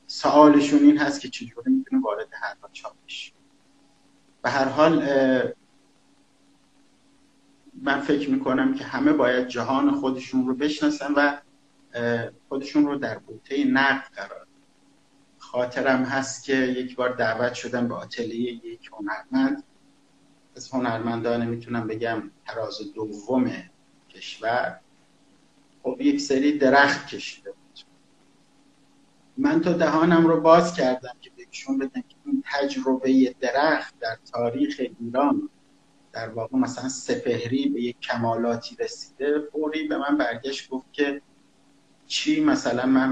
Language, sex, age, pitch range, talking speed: Persian, male, 50-69, 130-165 Hz, 115 wpm